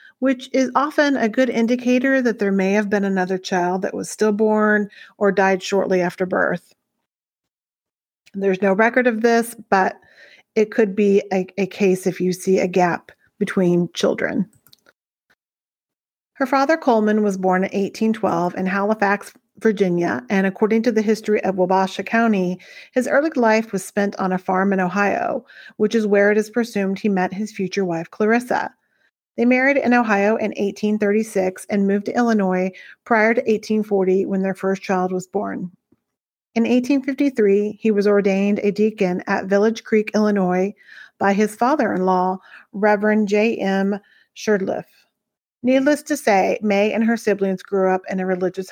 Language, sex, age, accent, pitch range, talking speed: English, female, 40-59, American, 190-225 Hz, 160 wpm